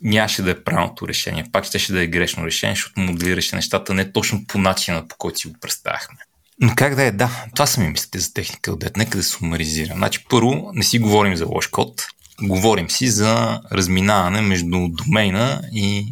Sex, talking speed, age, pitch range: male, 200 wpm, 30-49, 90-110 Hz